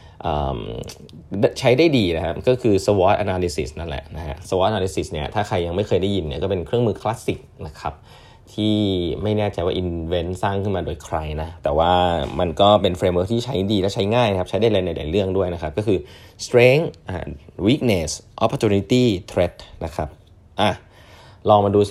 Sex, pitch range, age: male, 85-105 Hz, 20-39